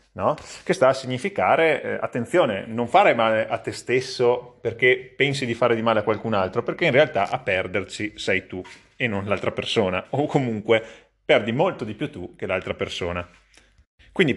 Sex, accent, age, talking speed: male, native, 30-49, 180 wpm